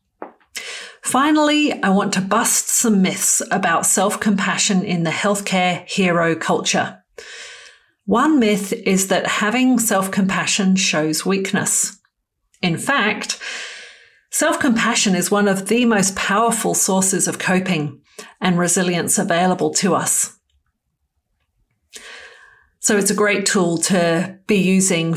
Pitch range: 180-215 Hz